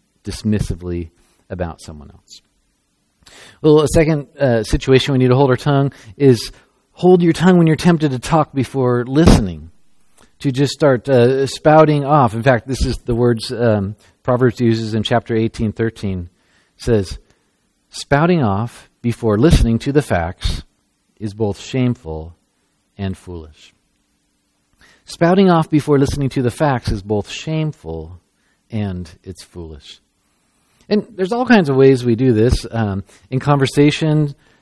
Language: English